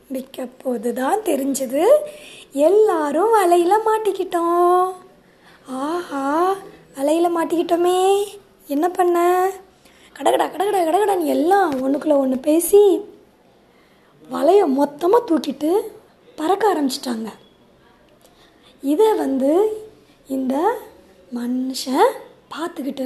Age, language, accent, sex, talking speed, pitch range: 20-39, Tamil, native, female, 70 wpm, 300-405 Hz